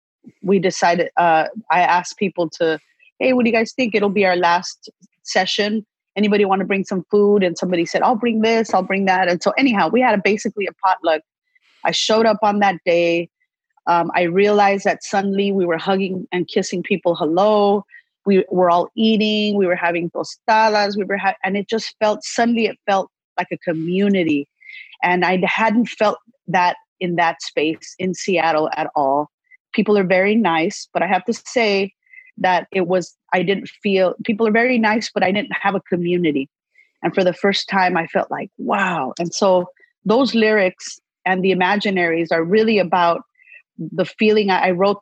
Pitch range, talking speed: 175-210 Hz, 185 wpm